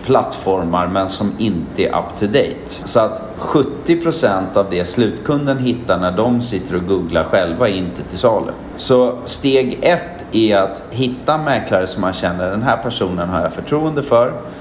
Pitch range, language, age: 90-125 Hz, Swedish, 40-59